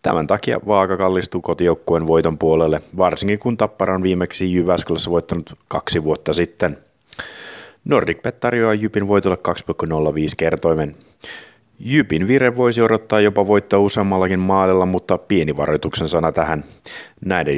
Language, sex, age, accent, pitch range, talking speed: Finnish, male, 30-49, native, 85-100 Hz, 125 wpm